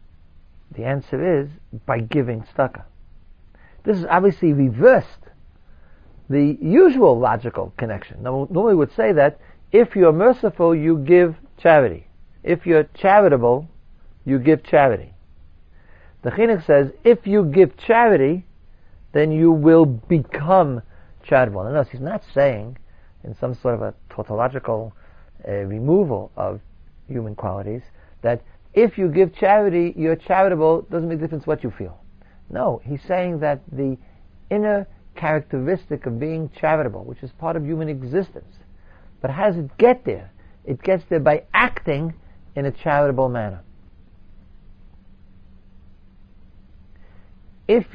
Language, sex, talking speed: English, male, 130 wpm